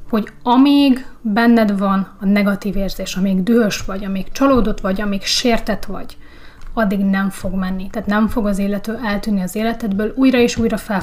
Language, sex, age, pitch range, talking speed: Hungarian, female, 30-49, 200-240 Hz, 175 wpm